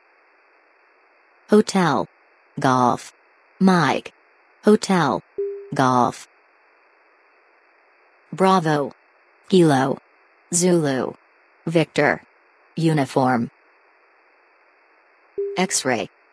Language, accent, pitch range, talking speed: English, American, 140-190 Hz, 40 wpm